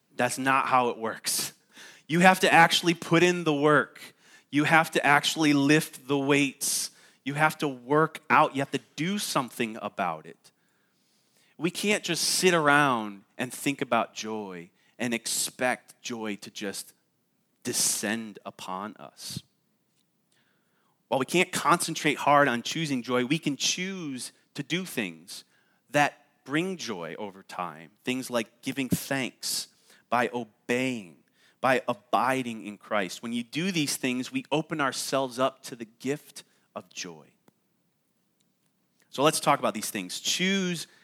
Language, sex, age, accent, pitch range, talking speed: English, male, 30-49, American, 120-160 Hz, 145 wpm